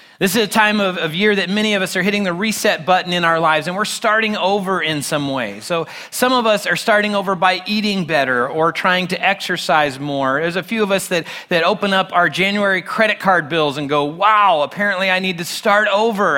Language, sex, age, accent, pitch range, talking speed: English, male, 30-49, American, 155-200 Hz, 235 wpm